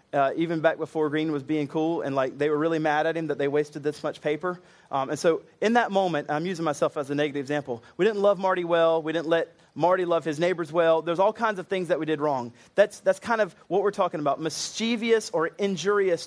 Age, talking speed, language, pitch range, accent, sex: 30-49, 250 wpm, English, 150-190 Hz, American, male